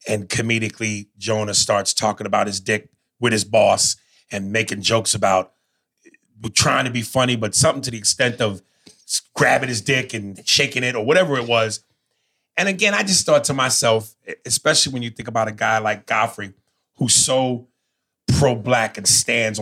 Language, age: English, 30-49